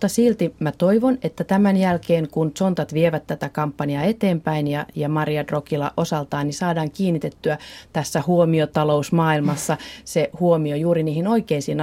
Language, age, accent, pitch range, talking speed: Finnish, 30-49, native, 150-180 Hz, 140 wpm